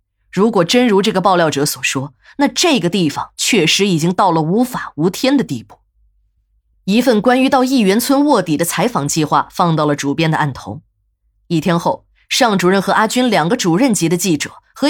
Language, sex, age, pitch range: Chinese, female, 20-39, 155-230 Hz